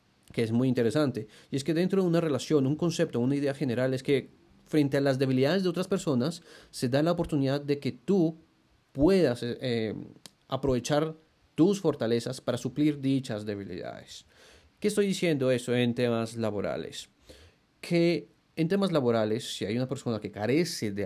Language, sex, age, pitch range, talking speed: Spanish, male, 30-49, 120-155 Hz, 170 wpm